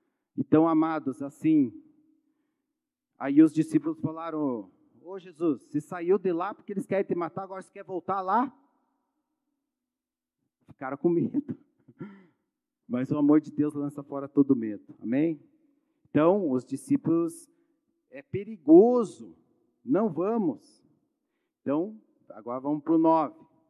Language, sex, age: Portuguese, male, 40-59